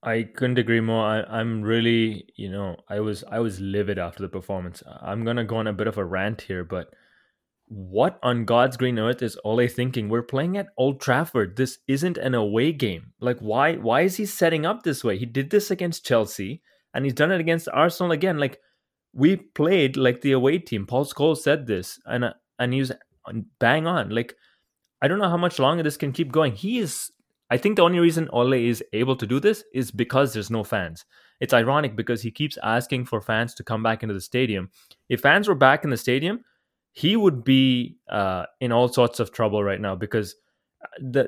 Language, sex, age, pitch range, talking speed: English, male, 20-39, 115-145 Hz, 210 wpm